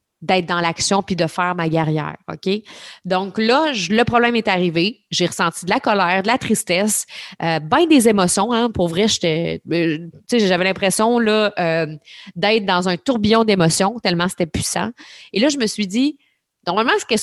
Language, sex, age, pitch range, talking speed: French, female, 30-49, 170-210 Hz, 180 wpm